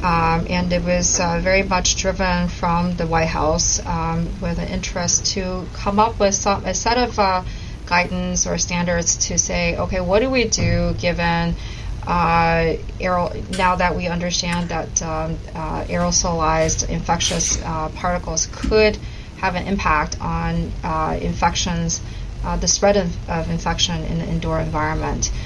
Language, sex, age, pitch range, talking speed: English, female, 30-49, 155-180 Hz, 155 wpm